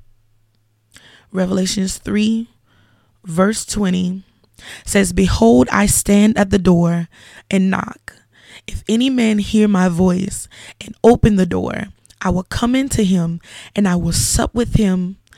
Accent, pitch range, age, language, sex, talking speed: American, 165-205 Hz, 20-39, English, female, 135 wpm